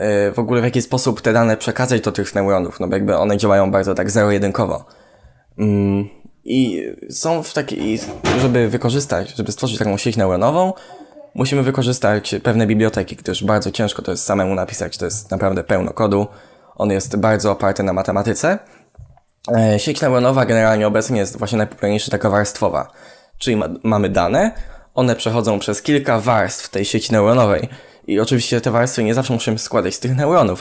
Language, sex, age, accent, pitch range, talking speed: Polish, male, 10-29, native, 100-120 Hz, 165 wpm